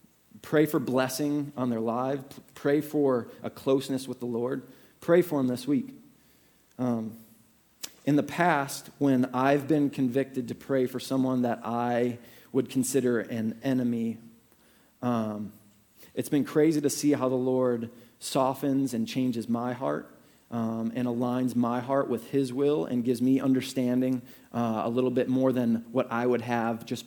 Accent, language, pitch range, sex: American, English, 120-150 Hz, male